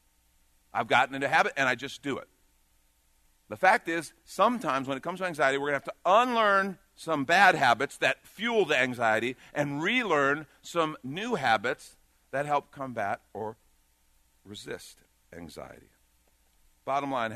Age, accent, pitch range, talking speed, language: 50-69, American, 80-130 Hz, 150 wpm, English